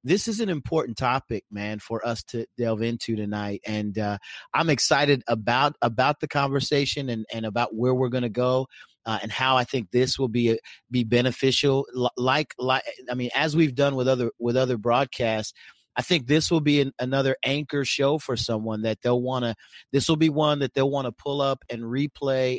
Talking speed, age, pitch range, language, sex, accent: 210 wpm, 40-59, 115-135 Hz, English, male, American